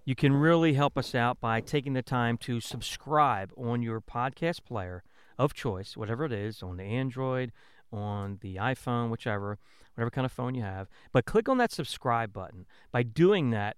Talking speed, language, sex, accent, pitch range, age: 185 wpm, English, male, American, 115-145 Hz, 40-59